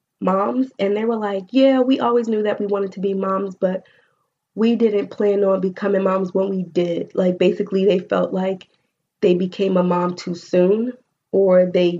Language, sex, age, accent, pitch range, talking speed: English, female, 20-39, American, 185-210 Hz, 190 wpm